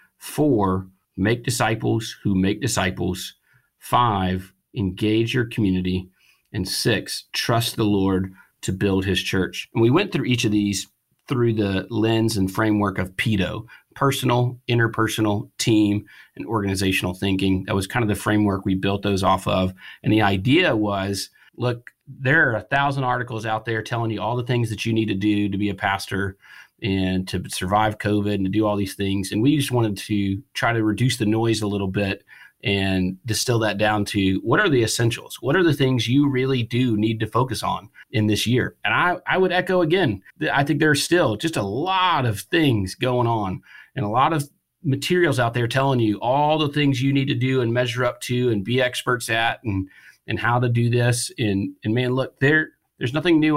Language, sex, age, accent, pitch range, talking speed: English, male, 40-59, American, 100-125 Hz, 200 wpm